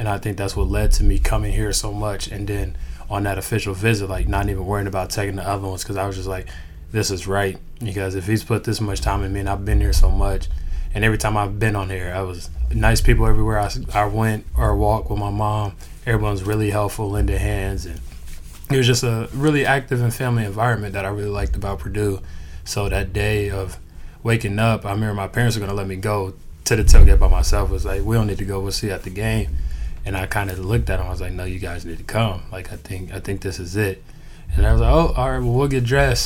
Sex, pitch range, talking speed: male, 95-110 Hz, 265 wpm